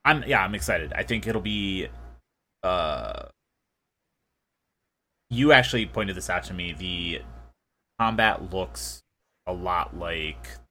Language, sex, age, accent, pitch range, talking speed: English, male, 30-49, American, 75-115 Hz, 125 wpm